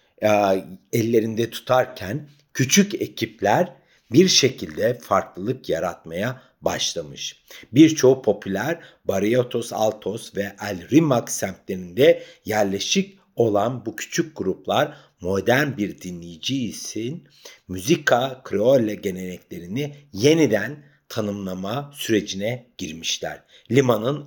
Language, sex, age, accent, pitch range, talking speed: Turkish, male, 60-79, native, 100-150 Hz, 80 wpm